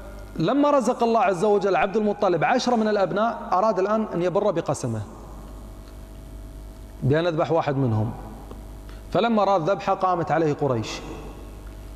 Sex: male